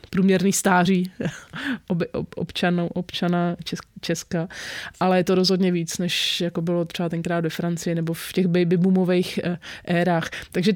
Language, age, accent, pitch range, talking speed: English, 30-49, Czech, 180-205 Hz, 130 wpm